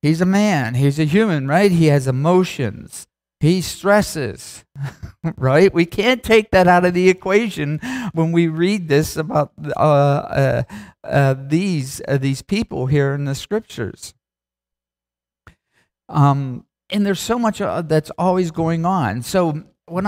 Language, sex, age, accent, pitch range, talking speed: English, male, 50-69, American, 140-190 Hz, 145 wpm